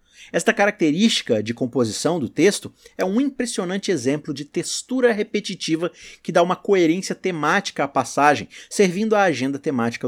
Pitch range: 135-205 Hz